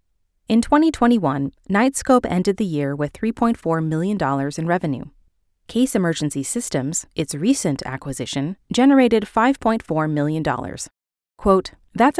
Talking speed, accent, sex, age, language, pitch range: 110 wpm, American, female, 20-39, English, 145-220 Hz